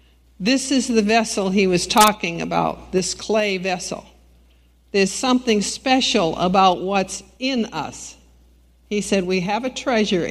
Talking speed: 140 wpm